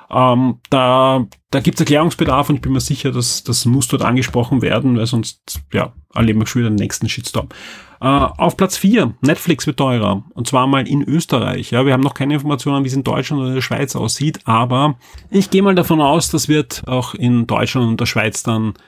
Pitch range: 120-145 Hz